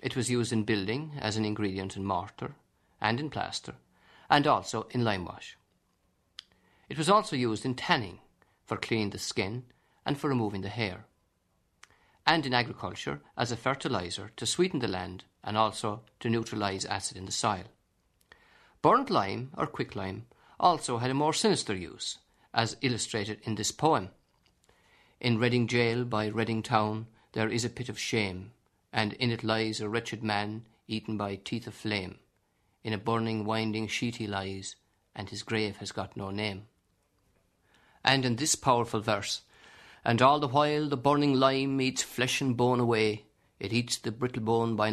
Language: English